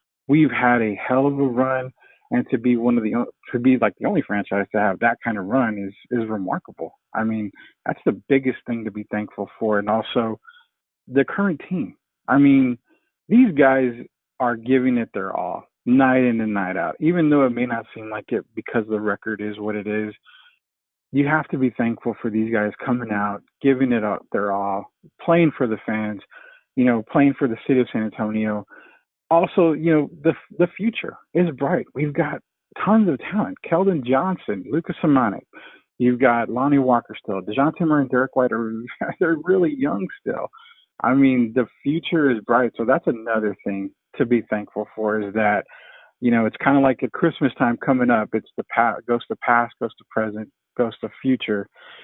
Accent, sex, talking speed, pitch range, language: American, male, 195 wpm, 110-140 Hz, English